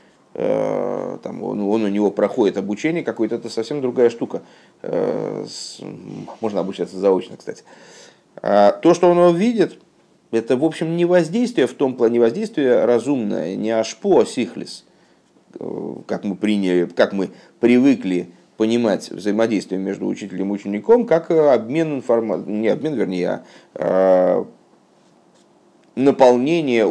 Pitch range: 100-150 Hz